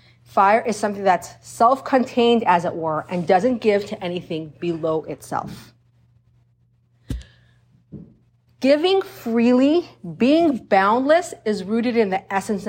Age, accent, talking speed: 40-59, American, 115 wpm